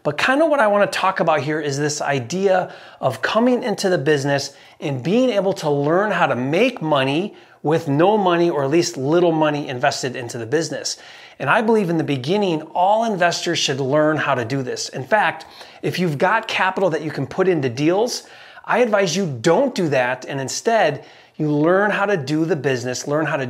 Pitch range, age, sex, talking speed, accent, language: 140-190 Hz, 30-49, male, 210 wpm, American, English